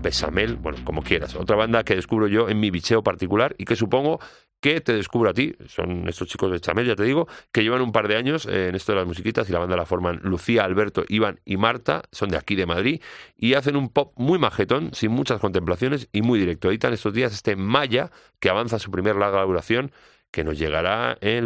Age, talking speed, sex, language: 40-59, 230 wpm, male, Spanish